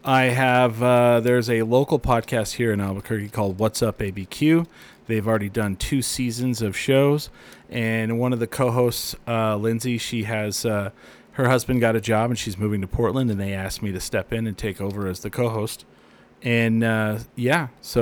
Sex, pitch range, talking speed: male, 110-125 Hz, 190 wpm